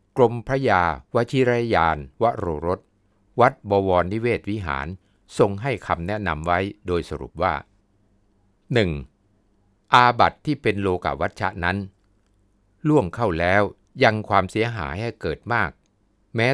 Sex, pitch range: male, 90-110 Hz